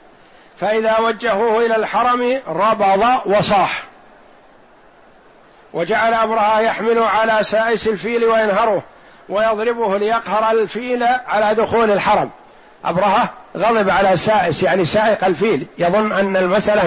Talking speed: 105 wpm